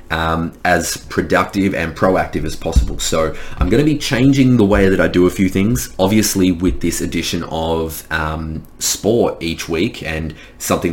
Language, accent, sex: English, Australian, male